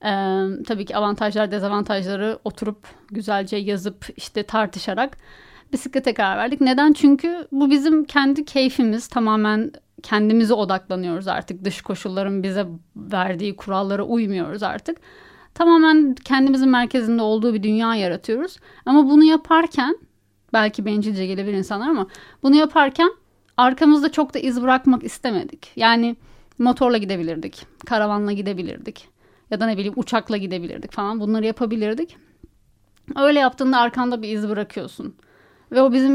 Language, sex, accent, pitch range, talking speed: Turkish, female, native, 205-265 Hz, 125 wpm